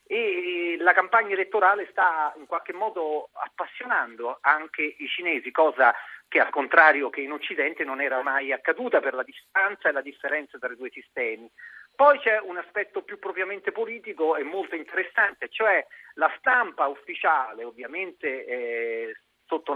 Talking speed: 150 wpm